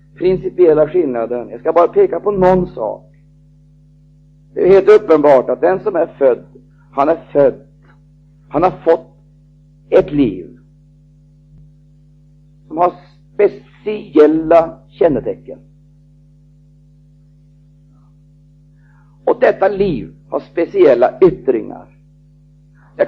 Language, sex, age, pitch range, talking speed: Swedish, male, 50-69, 145-180 Hz, 95 wpm